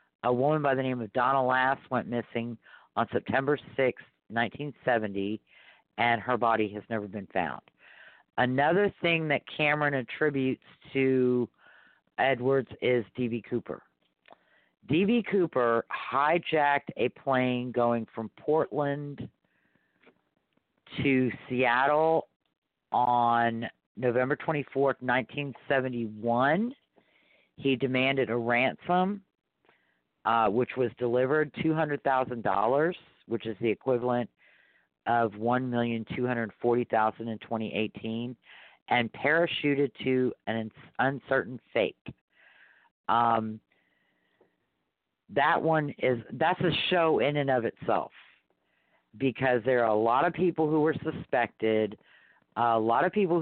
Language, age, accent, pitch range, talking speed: English, 50-69, American, 115-145 Hz, 110 wpm